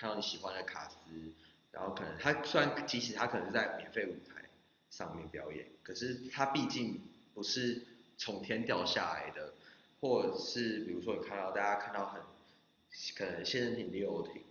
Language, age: Chinese, 20-39